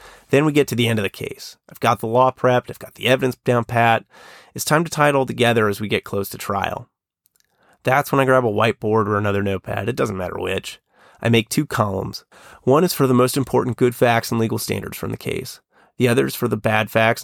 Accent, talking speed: American, 245 wpm